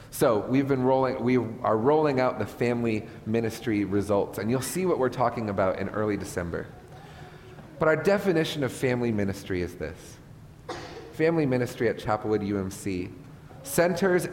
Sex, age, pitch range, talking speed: male, 30-49, 110-145 Hz, 150 wpm